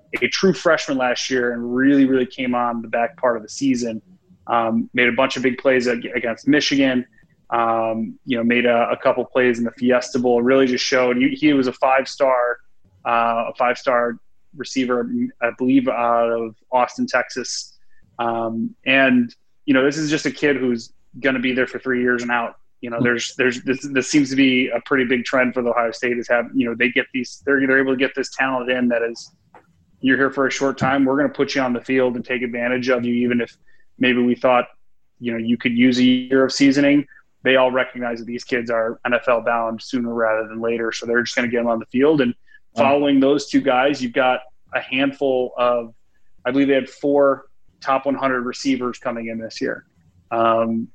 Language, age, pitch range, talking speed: English, 30-49, 120-135 Hz, 225 wpm